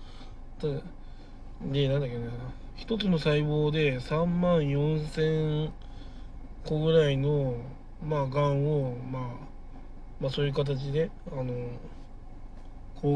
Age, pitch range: 20-39, 125-145 Hz